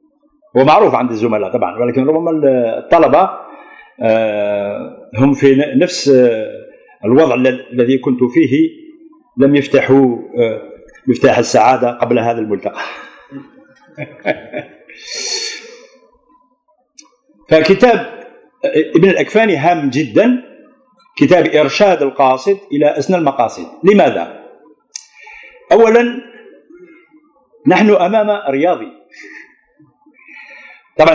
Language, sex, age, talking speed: Turkish, male, 50-69, 75 wpm